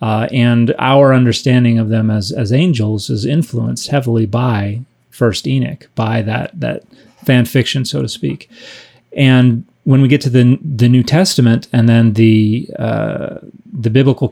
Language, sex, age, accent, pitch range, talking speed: English, male, 30-49, American, 120-135 Hz, 160 wpm